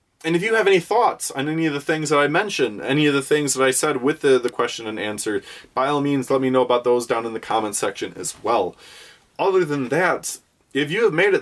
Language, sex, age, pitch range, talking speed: English, male, 20-39, 120-160 Hz, 265 wpm